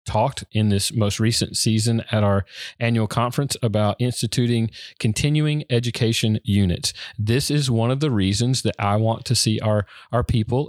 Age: 40-59